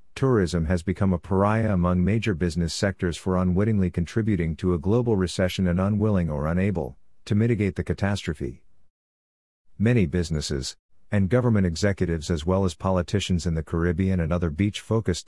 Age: 50-69